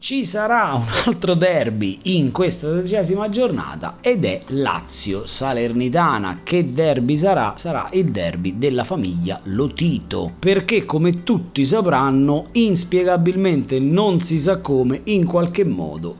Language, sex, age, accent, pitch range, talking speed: Italian, male, 30-49, native, 115-175 Hz, 120 wpm